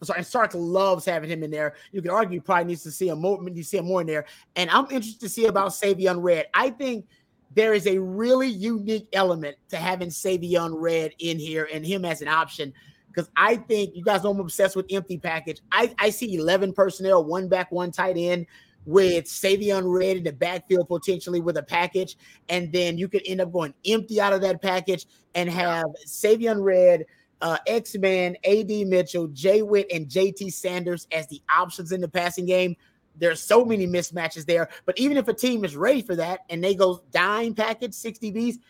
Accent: American